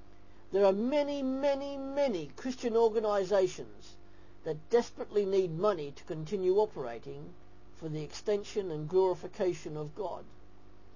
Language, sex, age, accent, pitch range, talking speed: English, male, 50-69, British, 140-210 Hz, 115 wpm